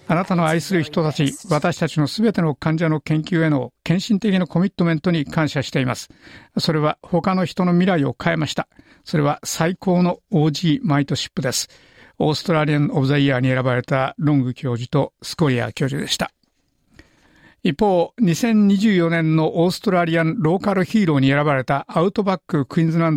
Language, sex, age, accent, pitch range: Japanese, male, 60-79, native, 145-185 Hz